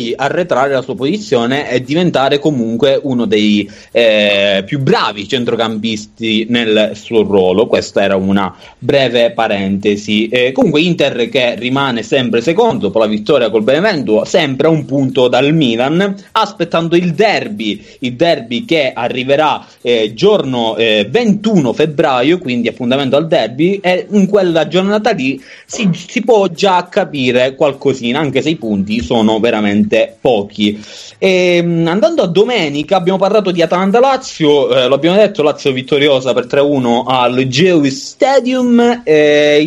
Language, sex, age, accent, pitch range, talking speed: Italian, male, 30-49, native, 125-195 Hz, 140 wpm